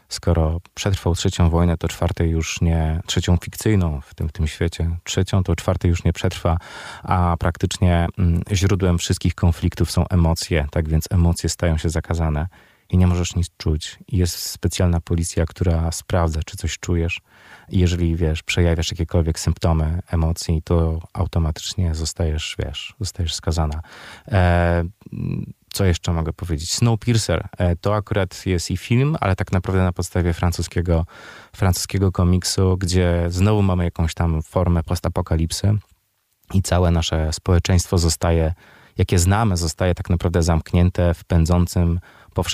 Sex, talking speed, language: male, 135 wpm, Polish